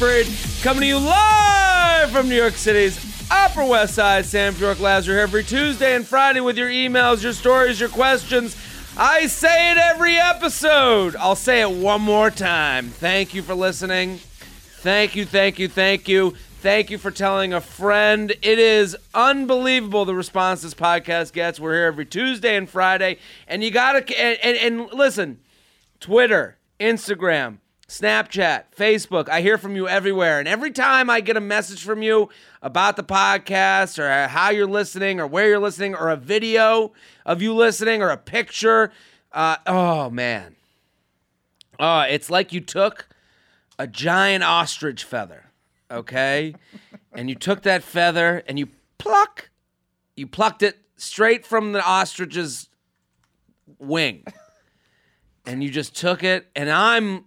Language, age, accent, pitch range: English, 30-49, American, 170-230 Hz